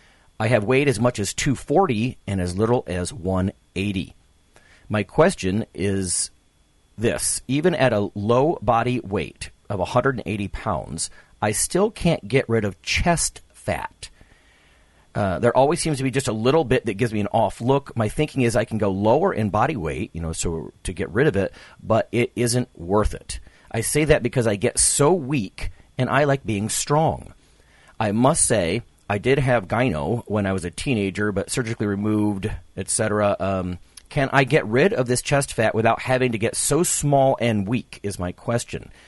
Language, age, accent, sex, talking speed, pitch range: English, 40-59, American, male, 185 wpm, 100-130 Hz